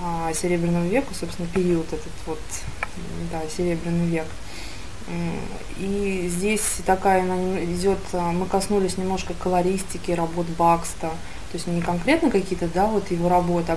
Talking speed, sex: 125 wpm, female